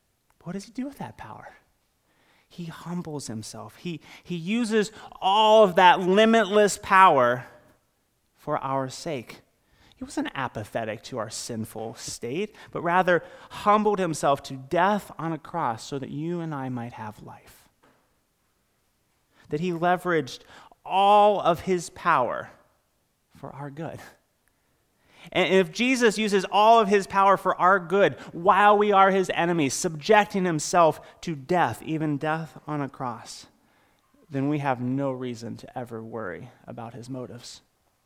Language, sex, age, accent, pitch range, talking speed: English, male, 30-49, American, 120-180 Hz, 145 wpm